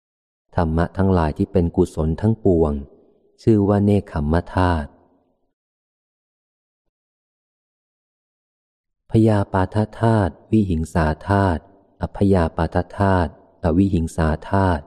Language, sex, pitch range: Thai, male, 80-95 Hz